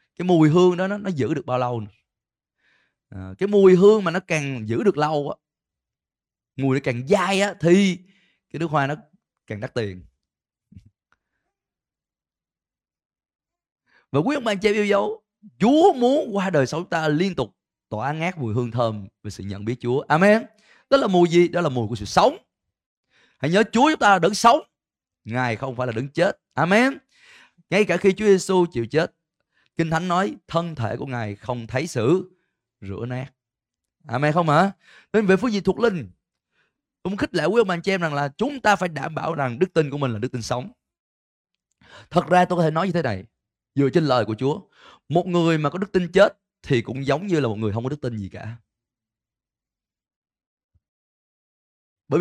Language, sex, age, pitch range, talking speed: Vietnamese, male, 20-39, 120-190 Hz, 195 wpm